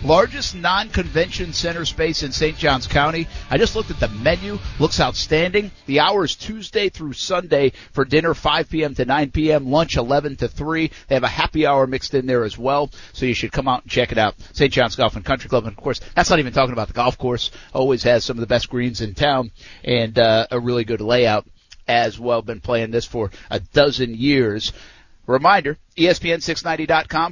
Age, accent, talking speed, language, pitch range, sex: 50-69, American, 205 wpm, English, 120-155 Hz, male